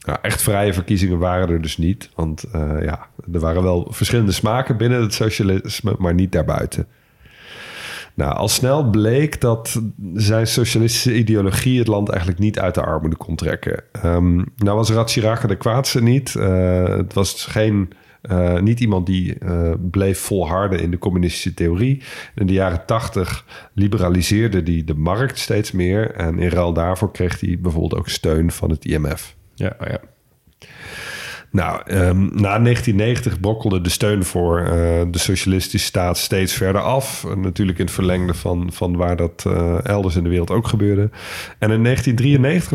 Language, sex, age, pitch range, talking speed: Dutch, male, 50-69, 90-110 Hz, 165 wpm